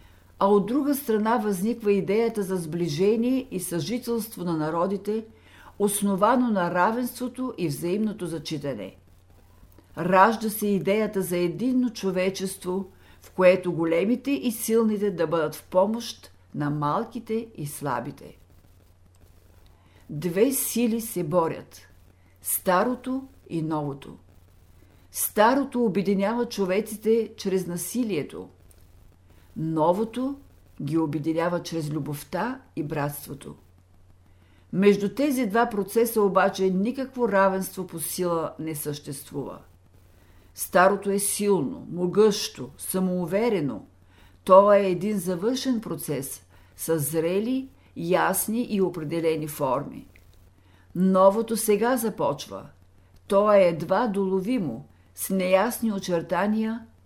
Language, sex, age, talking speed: Bulgarian, female, 50-69, 100 wpm